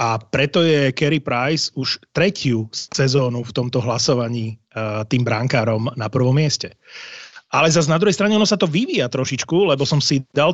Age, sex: 30-49, male